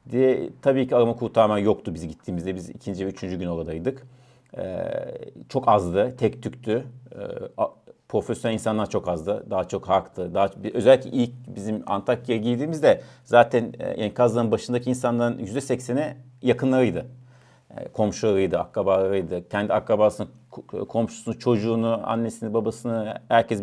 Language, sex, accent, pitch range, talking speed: Turkish, male, native, 110-125 Hz, 115 wpm